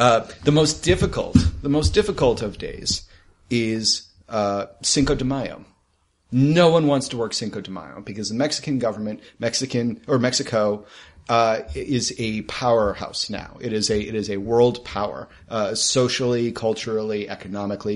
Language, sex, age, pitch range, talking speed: English, male, 30-49, 105-125 Hz, 155 wpm